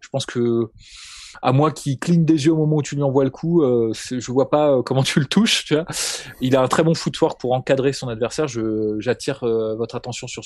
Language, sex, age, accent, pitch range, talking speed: French, male, 20-39, French, 115-140 Hz, 260 wpm